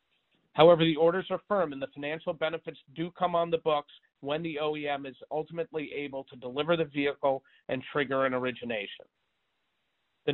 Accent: American